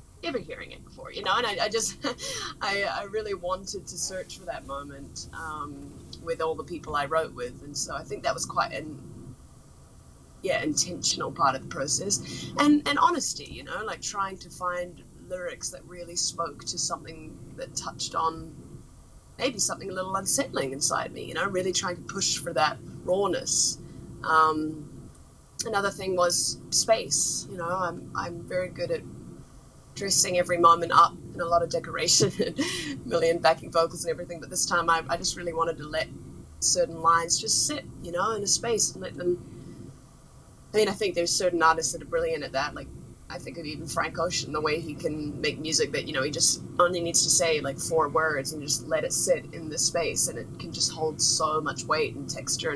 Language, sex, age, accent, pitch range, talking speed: English, female, 20-39, Australian, 150-185 Hz, 205 wpm